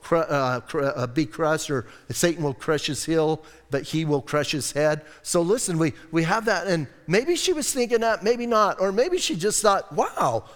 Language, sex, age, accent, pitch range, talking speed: English, male, 50-69, American, 150-220 Hz, 200 wpm